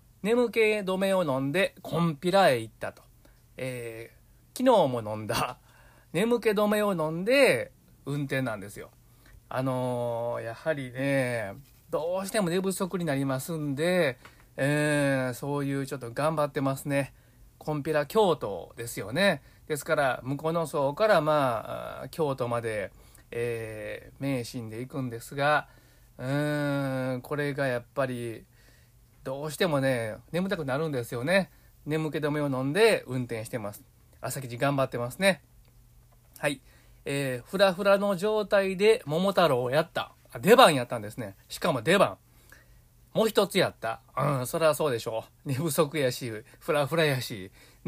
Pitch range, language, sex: 120-165 Hz, Japanese, male